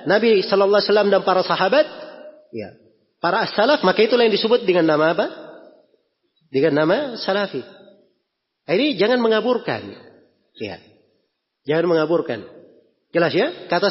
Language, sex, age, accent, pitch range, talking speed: Indonesian, male, 30-49, native, 140-195 Hz, 130 wpm